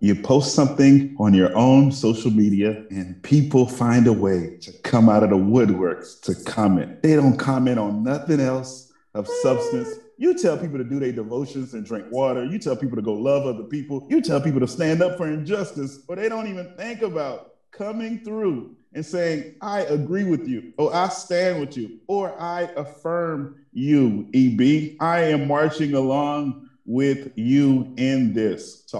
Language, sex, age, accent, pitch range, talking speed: English, male, 30-49, American, 110-150 Hz, 180 wpm